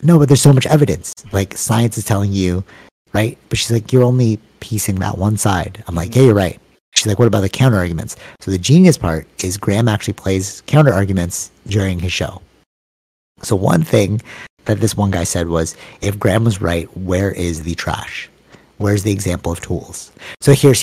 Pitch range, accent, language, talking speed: 85-110 Hz, American, English, 200 wpm